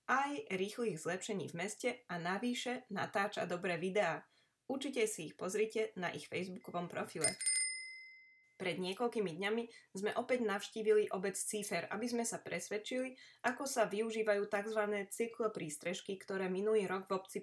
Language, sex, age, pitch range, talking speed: Slovak, female, 20-39, 190-235 Hz, 140 wpm